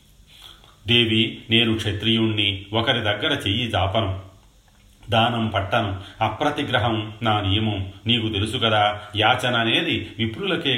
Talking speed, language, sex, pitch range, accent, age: 95 wpm, Telugu, male, 95-115 Hz, native, 40-59